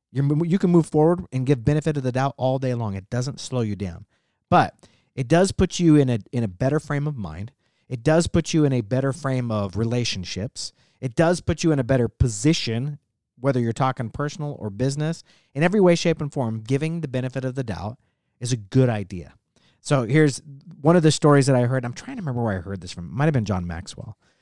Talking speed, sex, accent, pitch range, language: 235 wpm, male, American, 110-145 Hz, English